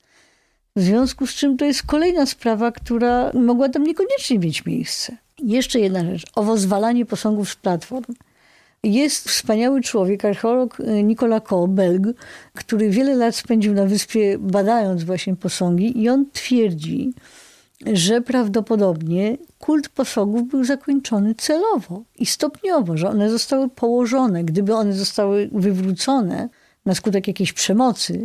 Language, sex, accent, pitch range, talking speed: Polish, female, native, 200-255 Hz, 130 wpm